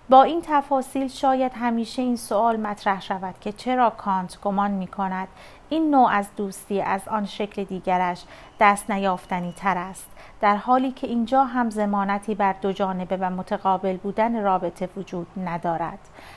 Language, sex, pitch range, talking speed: Persian, female, 195-250 Hz, 150 wpm